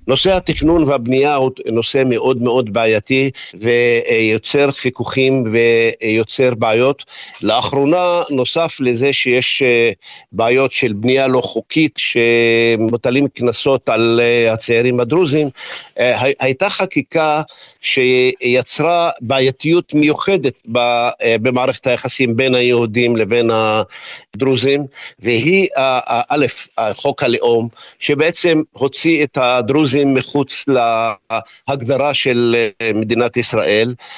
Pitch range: 120-140 Hz